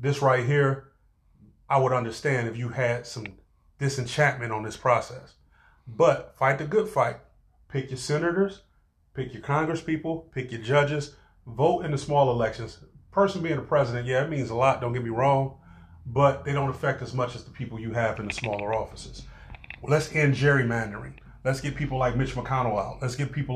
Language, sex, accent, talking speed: English, male, American, 190 wpm